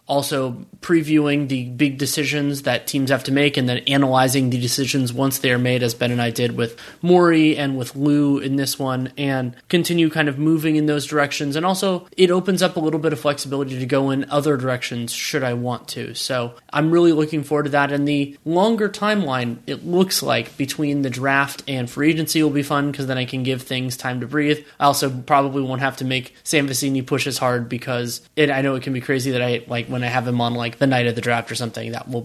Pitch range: 125-150 Hz